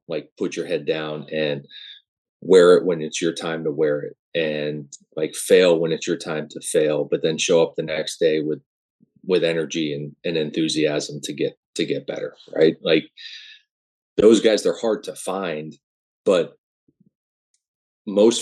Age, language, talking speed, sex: 30-49, English, 170 wpm, male